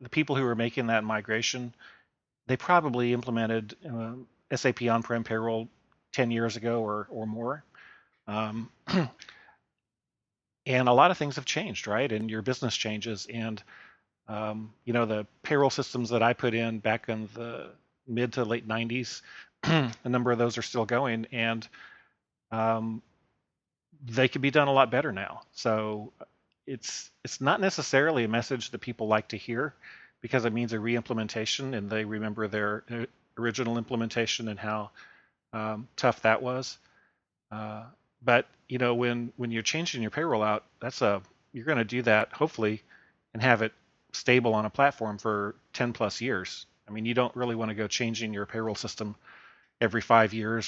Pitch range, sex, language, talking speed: 110-125 Hz, male, English, 170 wpm